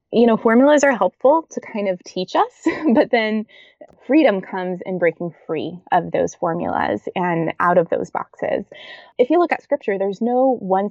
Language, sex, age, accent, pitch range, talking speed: English, female, 20-39, American, 180-235 Hz, 180 wpm